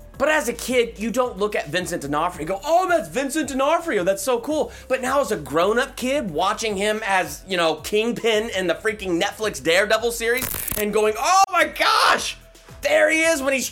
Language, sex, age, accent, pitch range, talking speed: English, male, 30-49, American, 170-260 Hz, 205 wpm